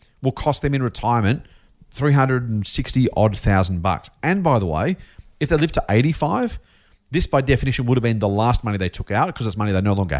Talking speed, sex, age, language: 210 wpm, male, 40-59, English